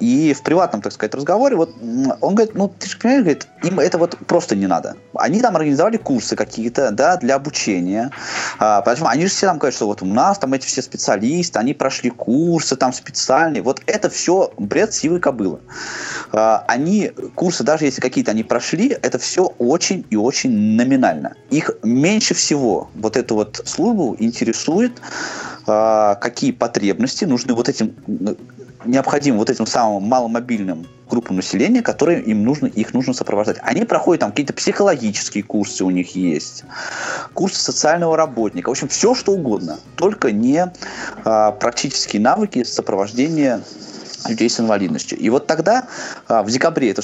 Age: 20-39